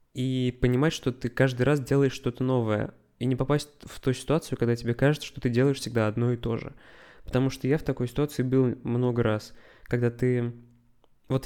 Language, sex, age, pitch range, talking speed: Russian, male, 20-39, 120-140 Hz, 200 wpm